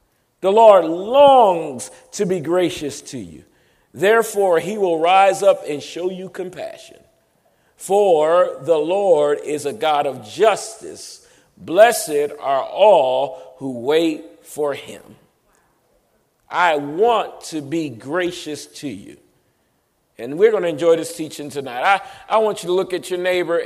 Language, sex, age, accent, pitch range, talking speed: English, male, 40-59, American, 145-190 Hz, 140 wpm